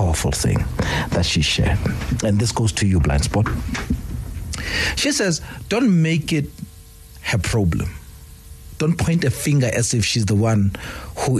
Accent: South African